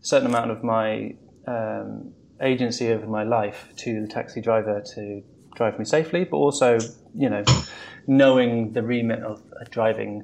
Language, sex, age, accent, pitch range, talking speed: English, male, 20-39, British, 110-125 Hz, 150 wpm